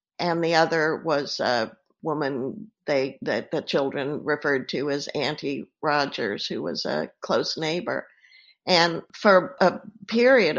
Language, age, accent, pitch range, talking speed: English, 50-69, American, 160-220 Hz, 135 wpm